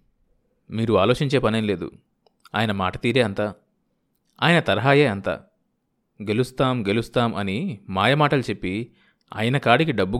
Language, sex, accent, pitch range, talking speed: Telugu, male, native, 110-155 Hz, 110 wpm